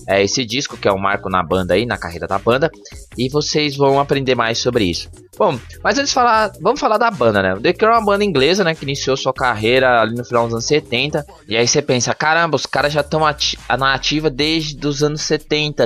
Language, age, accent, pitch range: Portuguese, 20-39, Brazilian, 115-195 Hz